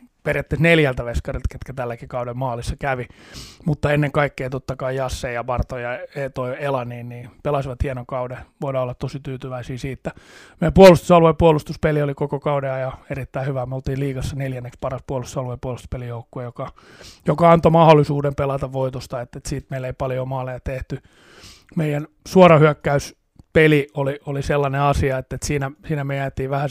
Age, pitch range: 30-49, 130-145 Hz